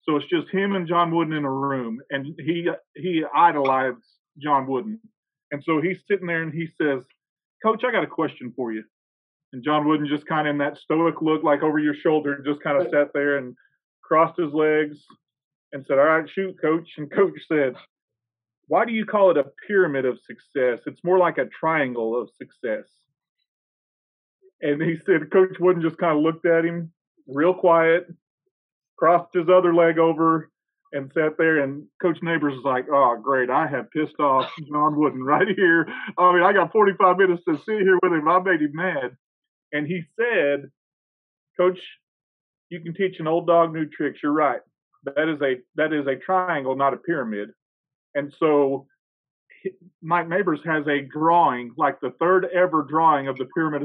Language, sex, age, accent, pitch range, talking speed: English, male, 40-59, American, 140-175 Hz, 190 wpm